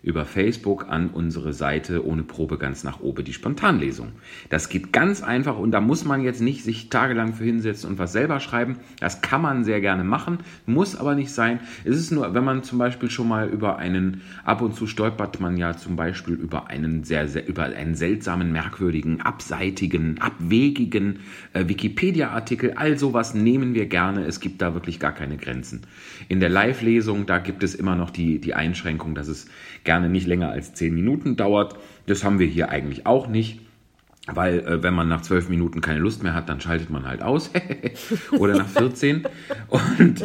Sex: male